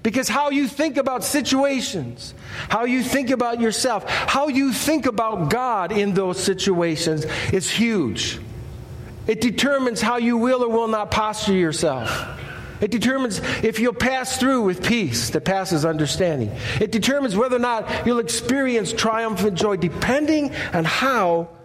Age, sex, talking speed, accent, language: 50-69, male, 150 wpm, American, English